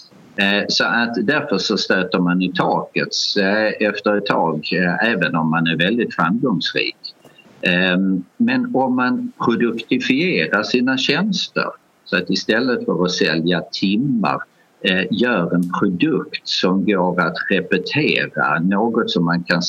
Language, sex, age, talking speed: Swedish, male, 50-69, 120 wpm